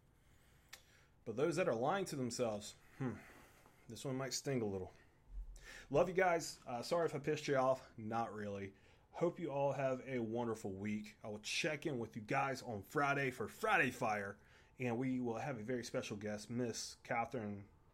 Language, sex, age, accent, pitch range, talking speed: English, male, 30-49, American, 105-135 Hz, 185 wpm